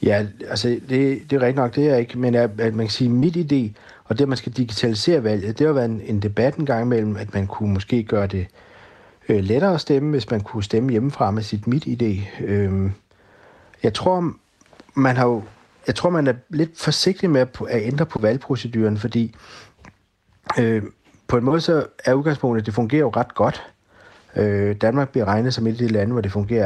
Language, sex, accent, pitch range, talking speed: Danish, male, native, 105-135 Hz, 220 wpm